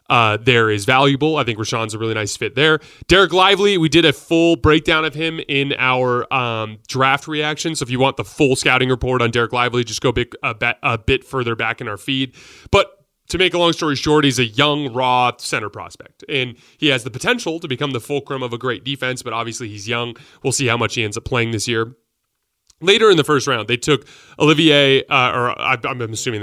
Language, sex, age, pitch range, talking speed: English, male, 30-49, 110-140 Hz, 225 wpm